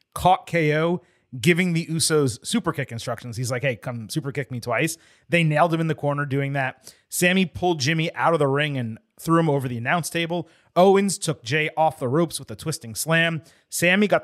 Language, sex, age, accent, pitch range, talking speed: English, male, 30-49, American, 130-170 Hz, 210 wpm